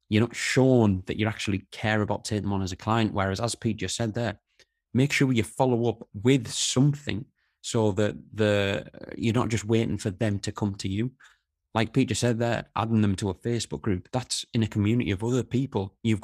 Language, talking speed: English, 220 wpm